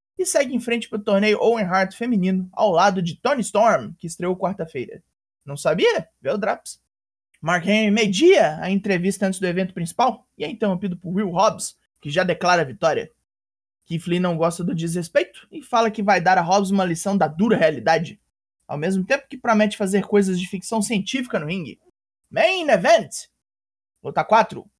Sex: male